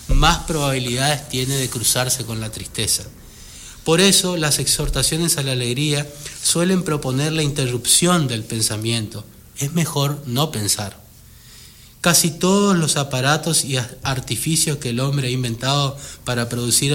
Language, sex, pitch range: Spanish, male, 125-170 Hz